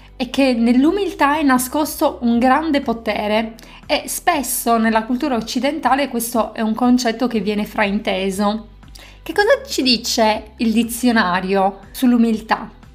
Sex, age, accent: female, 30-49, native